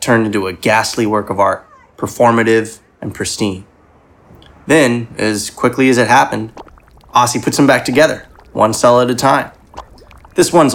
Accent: American